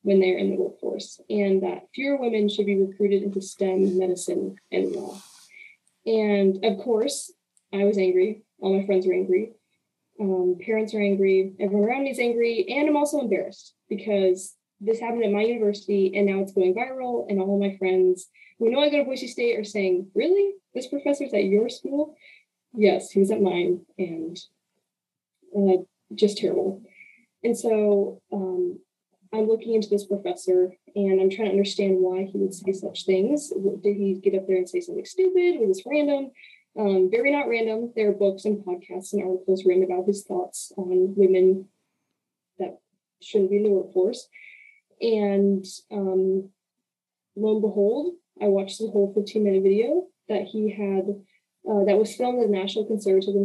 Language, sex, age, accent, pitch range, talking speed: English, female, 10-29, American, 190-225 Hz, 175 wpm